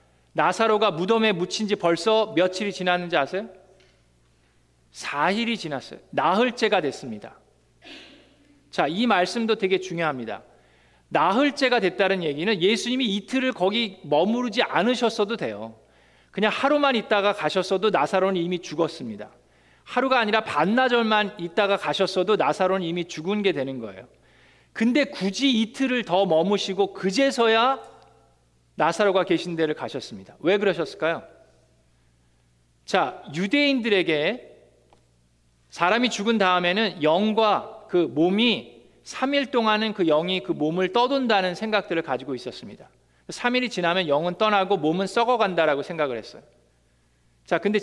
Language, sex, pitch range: Korean, male, 160-225 Hz